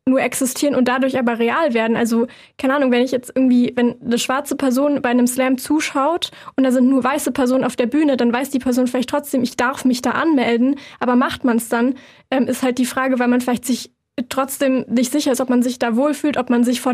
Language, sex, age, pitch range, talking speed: German, female, 10-29, 245-275 Hz, 250 wpm